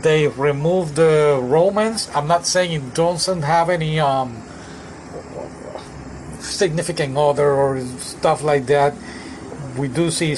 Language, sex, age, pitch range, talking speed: English, male, 40-59, 130-165 Hz, 120 wpm